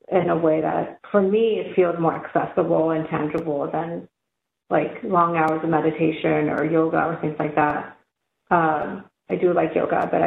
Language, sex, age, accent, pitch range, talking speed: English, female, 40-59, American, 160-195 Hz, 175 wpm